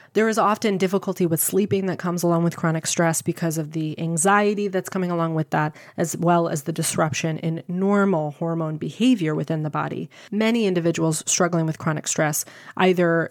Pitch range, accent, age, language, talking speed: 165-200 Hz, American, 20-39, English, 180 wpm